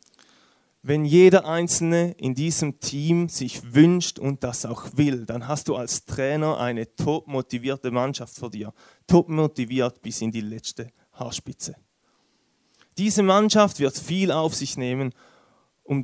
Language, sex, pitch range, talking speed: German, male, 125-160 Hz, 140 wpm